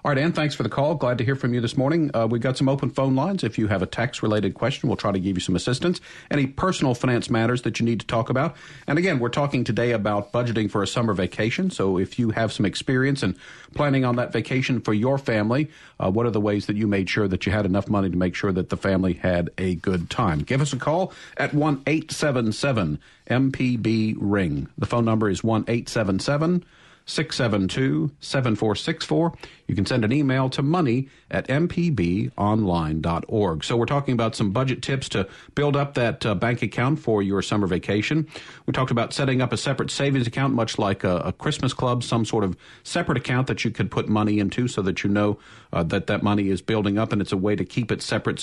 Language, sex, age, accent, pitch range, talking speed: English, male, 50-69, American, 105-135 Hz, 225 wpm